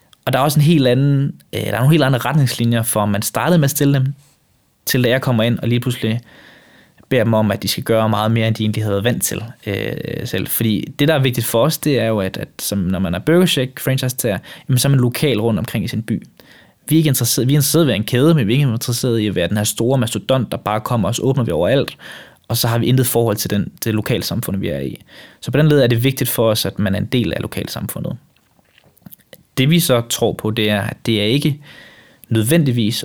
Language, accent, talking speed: Danish, native, 255 wpm